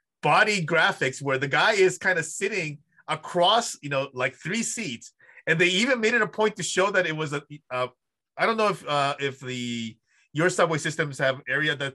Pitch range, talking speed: 130-175 Hz, 210 wpm